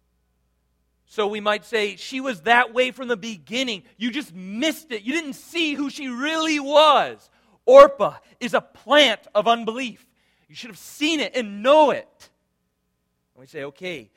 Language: English